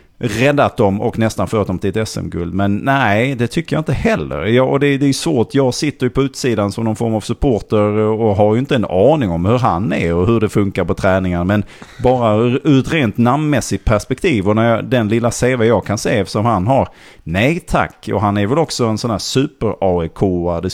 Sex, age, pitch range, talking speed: male, 30-49, 100-130 Hz, 235 wpm